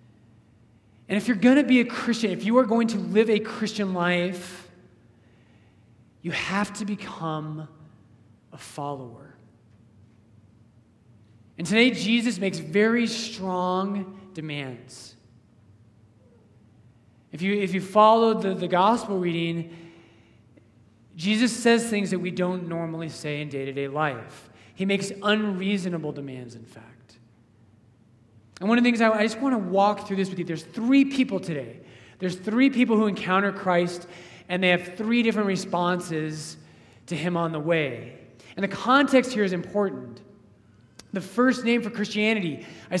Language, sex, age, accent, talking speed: English, male, 30-49, American, 145 wpm